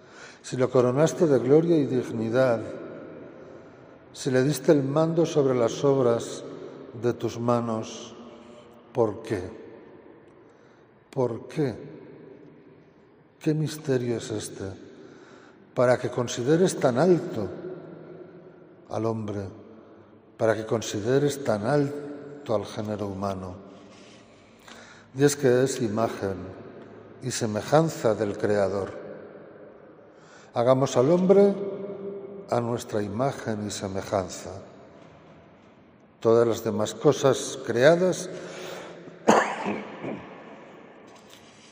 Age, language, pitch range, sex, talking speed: 60-79, Spanish, 110-145 Hz, male, 90 wpm